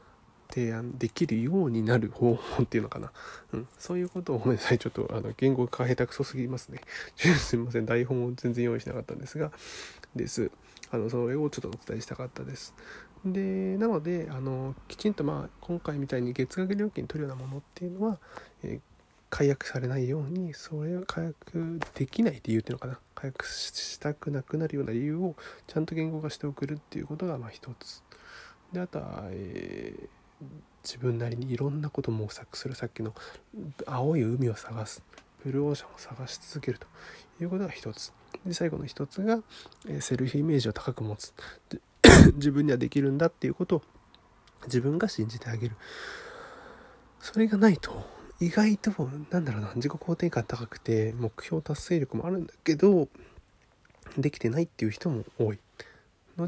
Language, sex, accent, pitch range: Japanese, male, native, 120-170 Hz